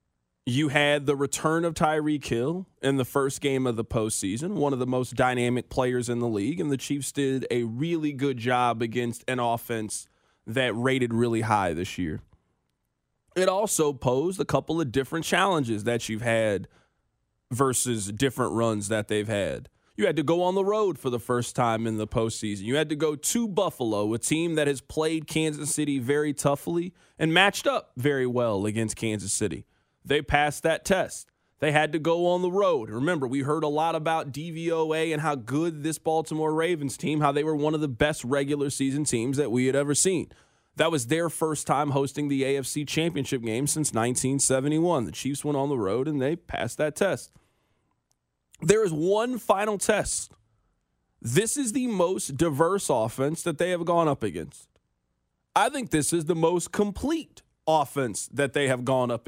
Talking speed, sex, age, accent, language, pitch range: 190 wpm, male, 20-39, American, English, 120-160 Hz